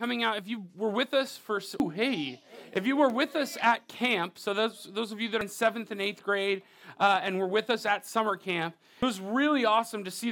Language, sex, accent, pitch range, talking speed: English, male, American, 180-225 Hz, 245 wpm